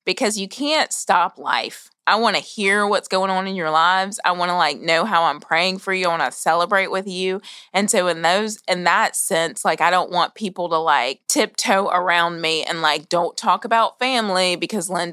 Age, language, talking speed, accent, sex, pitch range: 20-39, English, 220 wpm, American, female, 170-195 Hz